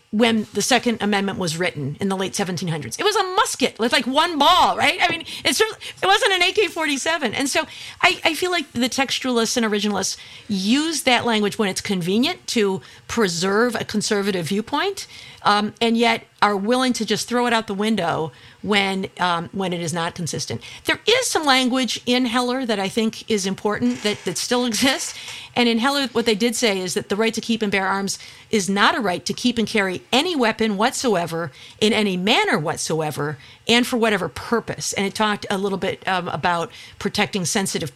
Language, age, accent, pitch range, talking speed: English, 50-69, American, 185-235 Hz, 200 wpm